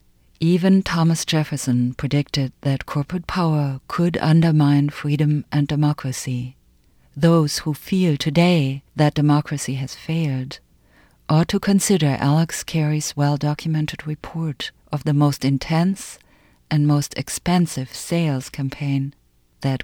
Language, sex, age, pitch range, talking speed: English, female, 50-69, 130-160 Hz, 110 wpm